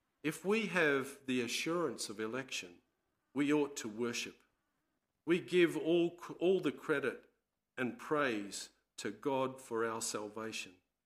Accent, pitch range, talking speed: Australian, 115-150 Hz, 130 wpm